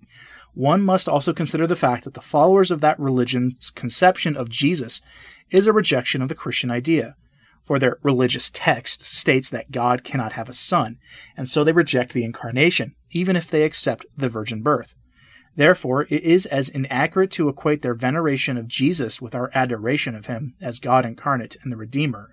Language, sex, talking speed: English, male, 185 wpm